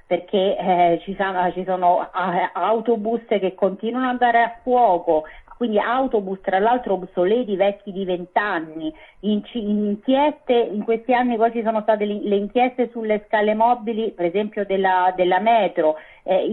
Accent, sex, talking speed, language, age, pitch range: native, female, 155 wpm, Italian, 40-59, 195-245 Hz